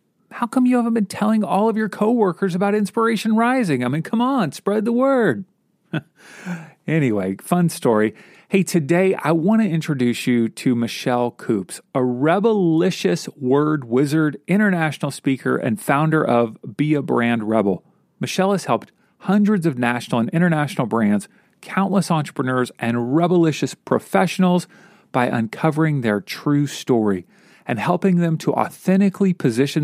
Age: 40-59